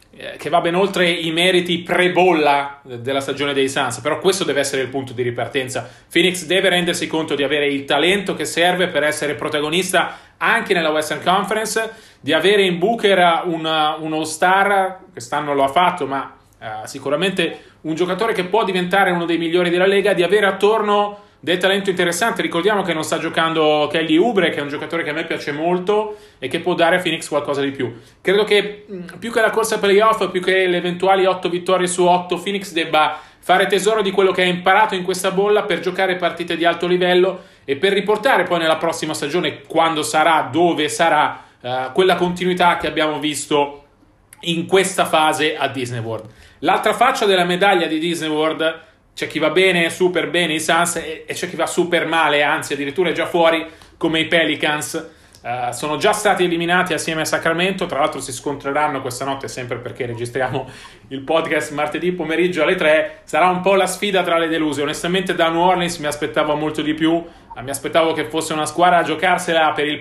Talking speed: 190 wpm